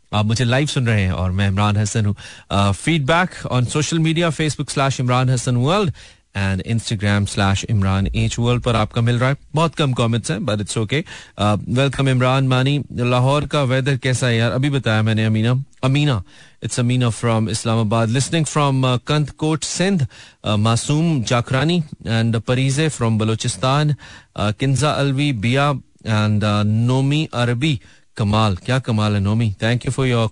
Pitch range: 110-135 Hz